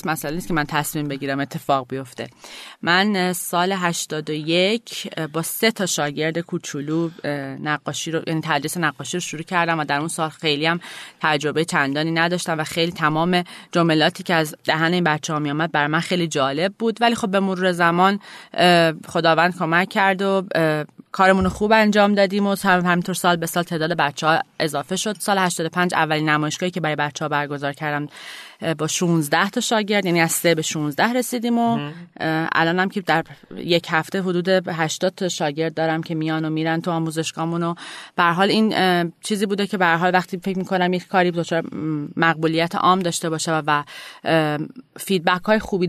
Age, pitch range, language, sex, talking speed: 30-49, 160-185 Hz, Persian, female, 175 wpm